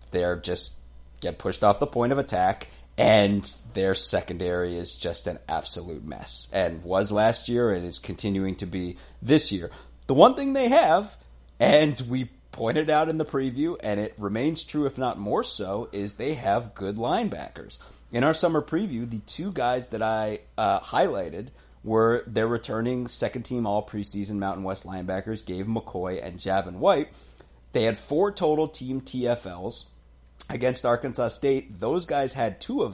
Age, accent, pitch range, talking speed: 30-49, American, 95-125 Hz, 170 wpm